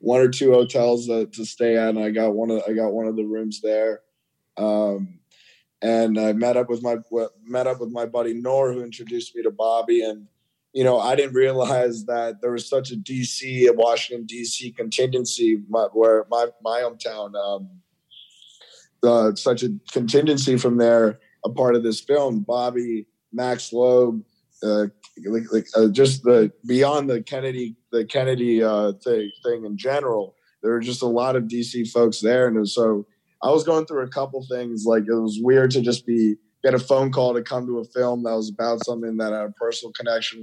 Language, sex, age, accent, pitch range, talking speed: English, male, 20-39, American, 110-125 Hz, 195 wpm